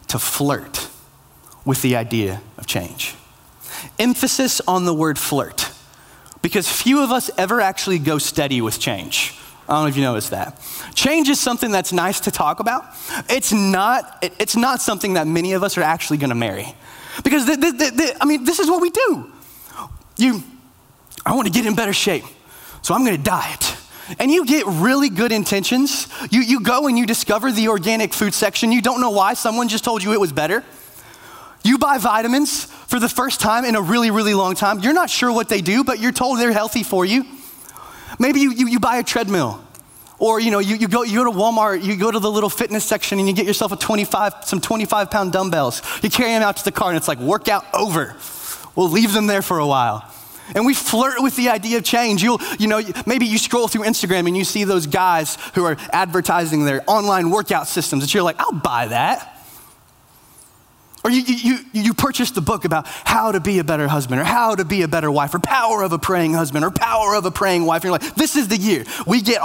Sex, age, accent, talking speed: male, 20-39, American, 225 wpm